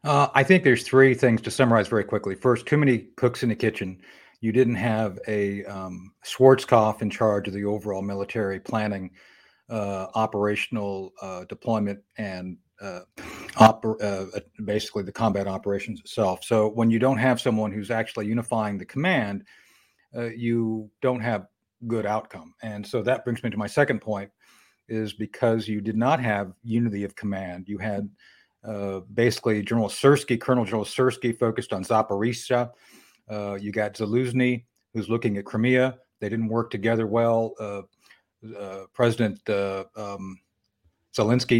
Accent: American